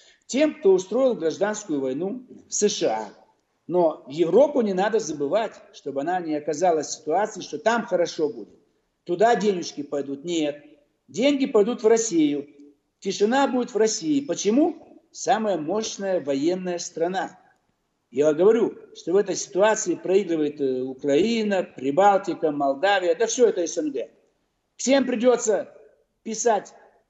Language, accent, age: Russian, native, 60-79